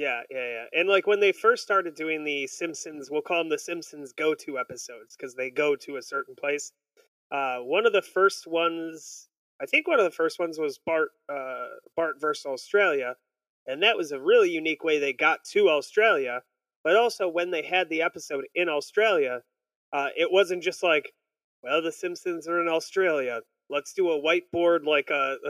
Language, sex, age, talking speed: English, male, 30-49, 195 wpm